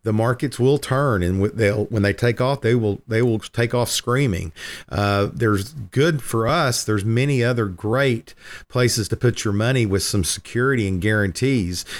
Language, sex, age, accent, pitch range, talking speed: English, male, 50-69, American, 110-130 Hz, 180 wpm